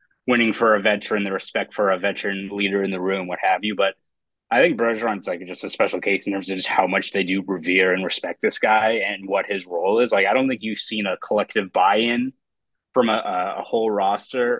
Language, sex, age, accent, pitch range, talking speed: English, male, 20-39, American, 95-110 Hz, 240 wpm